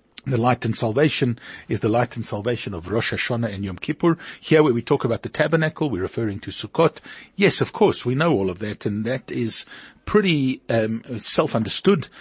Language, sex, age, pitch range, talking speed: English, male, 50-69, 110-150 Hz, 195 wpm